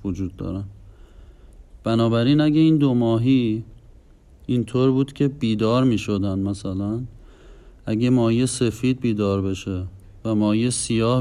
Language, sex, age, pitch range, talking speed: Persian, male, 40-59, 100-120 Hz, 125 wpm